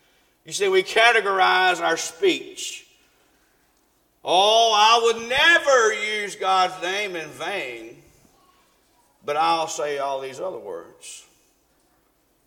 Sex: male